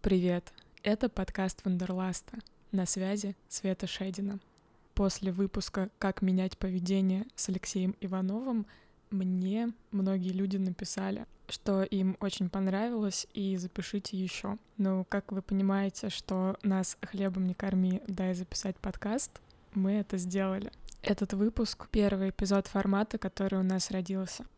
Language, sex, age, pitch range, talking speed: Russian, female, 20-39, 185-200 Hz, 125 wpm